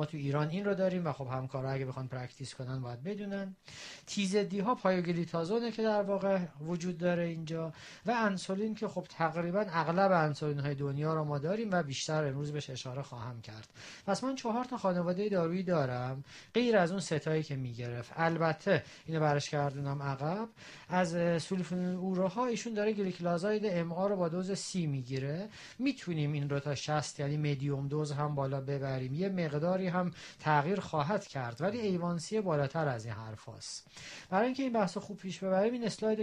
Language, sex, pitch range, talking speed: Persian, male, 145-195 Hz, 180 wpm